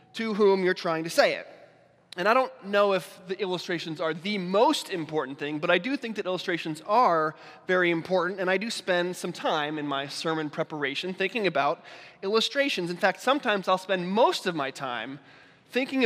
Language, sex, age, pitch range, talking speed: English, male, 20-39, 165-205 Hz, 190 wpm